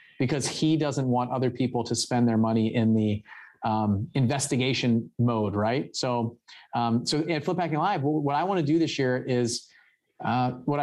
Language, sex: English, male